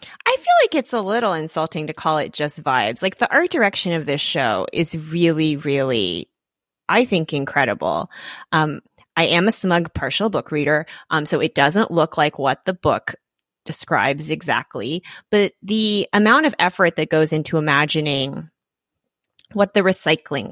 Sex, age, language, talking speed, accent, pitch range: female, 30-49, English, 165 wpm, American, 150-195 Hz